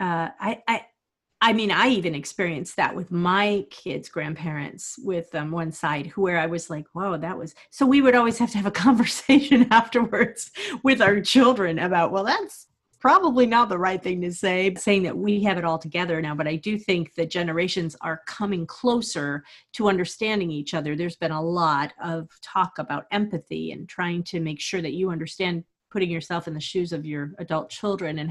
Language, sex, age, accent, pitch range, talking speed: English, female, 40-59, American, 165-205 Hz, 200 wpm